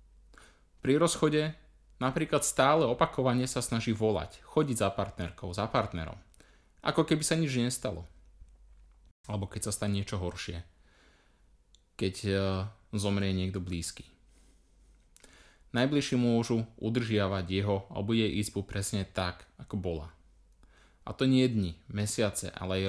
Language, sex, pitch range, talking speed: Slovak, male, 85-115 Hz, 125 wpm